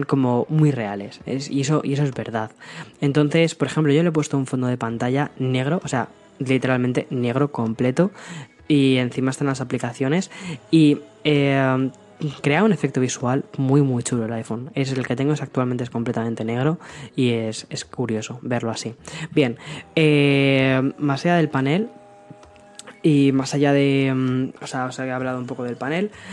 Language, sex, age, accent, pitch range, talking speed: Spanish, female, 10-29, Spanish, 125-150 Hz, 170 wpm